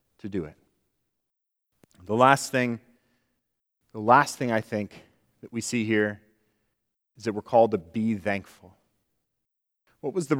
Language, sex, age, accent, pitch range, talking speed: English, male, 30-49, American, 115-150 Hz, 145 wpm